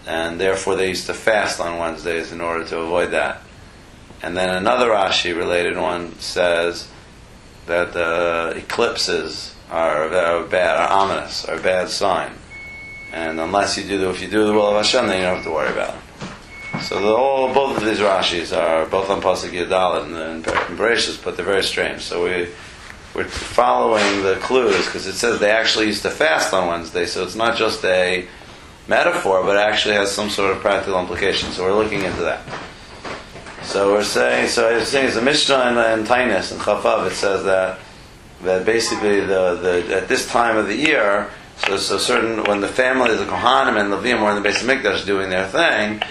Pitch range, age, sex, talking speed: 90-105 Hz, 30-49, male, 195 wpm